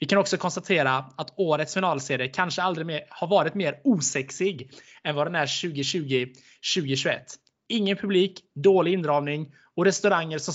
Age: 20-39